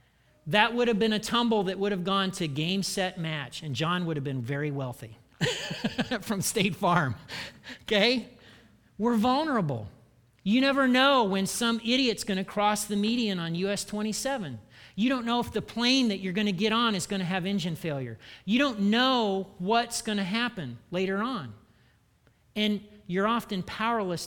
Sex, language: male, English